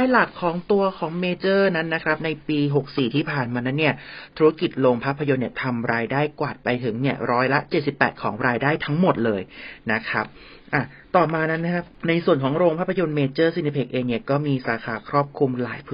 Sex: male